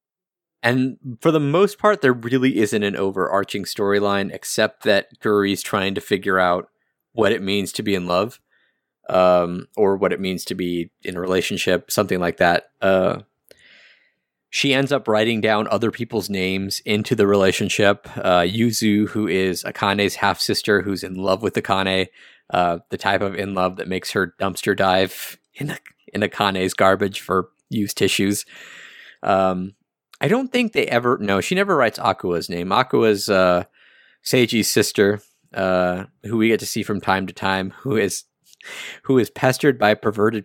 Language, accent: English, American